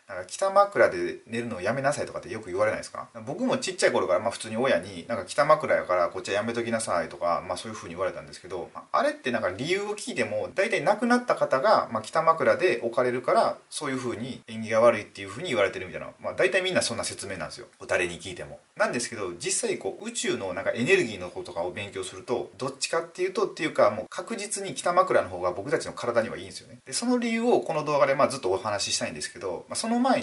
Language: Japanese